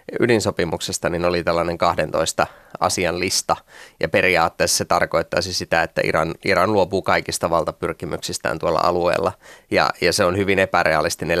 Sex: male